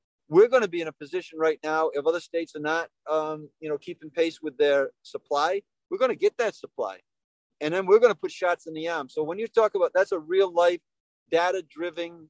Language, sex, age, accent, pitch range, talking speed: English, male, 40-59, American, 145-175 Hz, 240 wpm